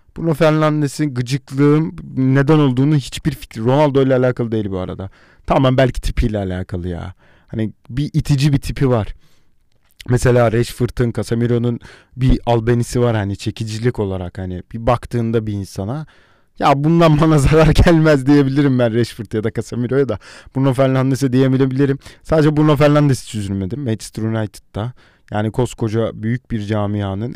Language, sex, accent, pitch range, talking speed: Turkish, male, native, 105-140 Hz, 140 wpm